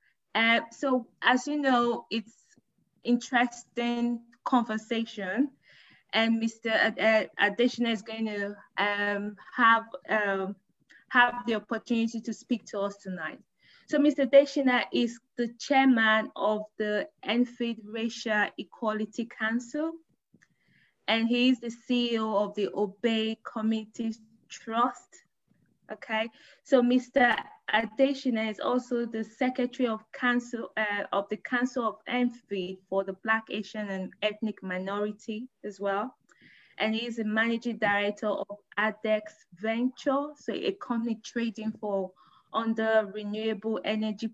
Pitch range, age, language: 210-245 Hz, 20-39, English